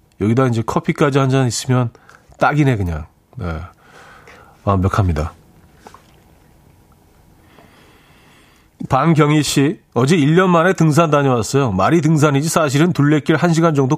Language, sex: Korean, male